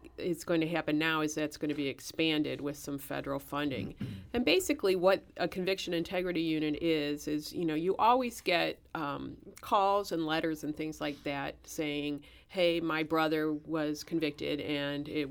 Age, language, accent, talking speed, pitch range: 40-59, English, American, 175 wpm, 145-165 Hz